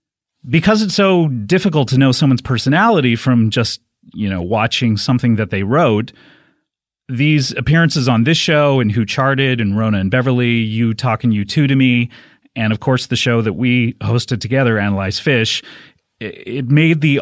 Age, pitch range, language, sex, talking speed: 30-49, 115-155 Hz, English, male, 170 wpm